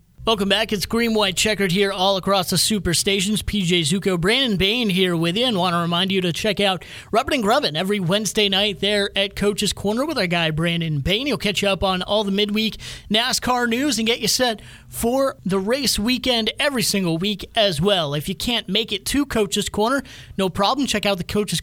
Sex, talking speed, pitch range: male, 220 wpm, 185-225 Hz